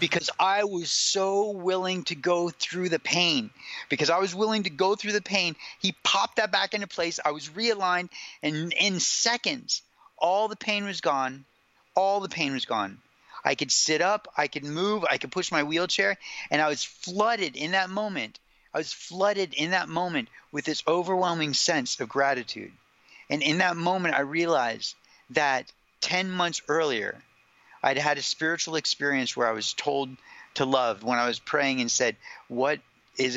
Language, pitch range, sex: English, 120-175 Hz, male